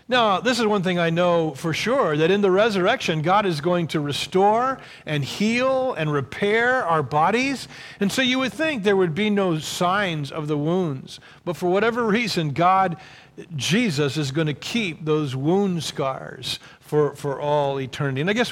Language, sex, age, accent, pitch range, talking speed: English, male, 50-69, American, 150-200 Hz, 185 wpm